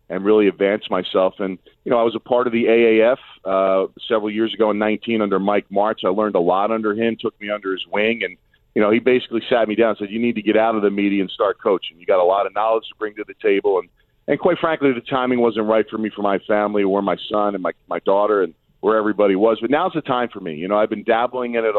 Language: English